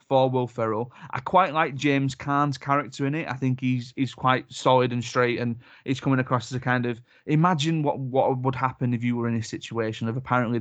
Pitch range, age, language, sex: 115-135 Hz, 30-49, English, male